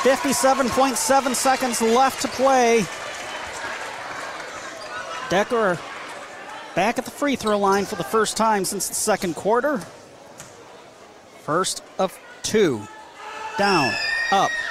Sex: male